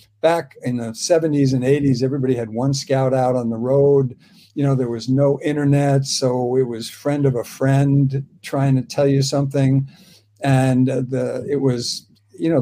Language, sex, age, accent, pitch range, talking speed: English, male, 60-79, American, 125-150 Hz, 180 wpm